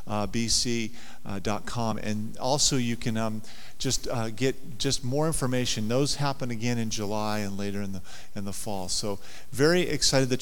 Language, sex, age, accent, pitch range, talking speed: English, male, 40-59, American, 105-125 Hz, 175 wpm